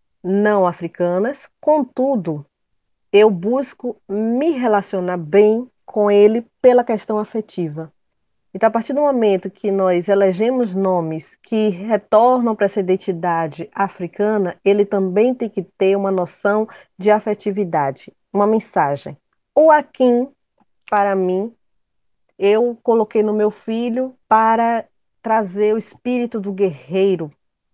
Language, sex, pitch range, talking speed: Portuguese, female, 185-225 Hz, 115 wpm